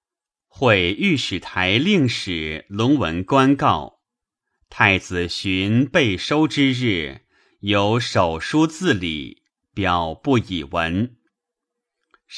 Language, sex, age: Chinese, male, 30-49